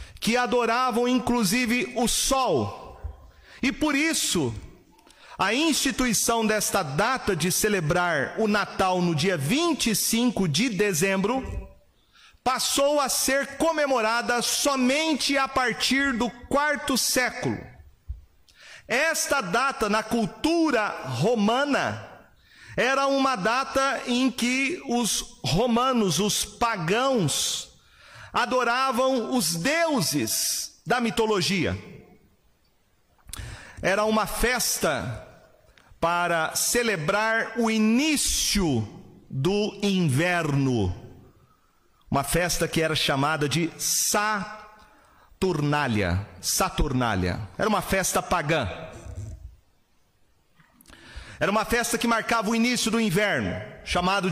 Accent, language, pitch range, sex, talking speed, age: Brazilian, Portuguese, 175-250 Hz, male, 90 wpm, 40-59